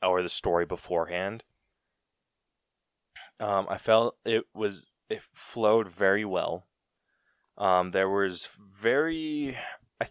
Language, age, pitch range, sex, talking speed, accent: English, 20-39, 85-110 Hz, male, 105 wpm, American